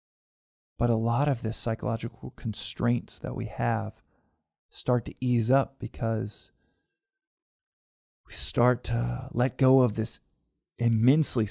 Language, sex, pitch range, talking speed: English, male, 110-130 Hz, 120 wpm